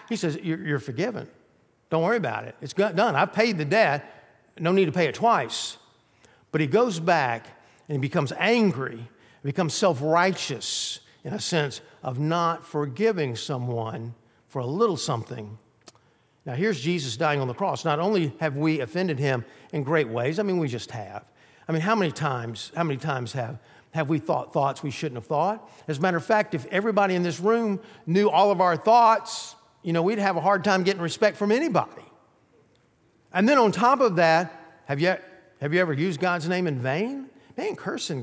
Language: English